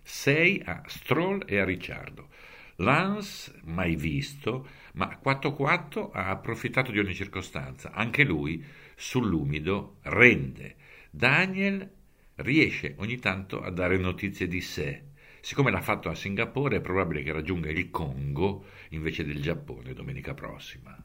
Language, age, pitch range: Italian, 50-69, 75-105 Hz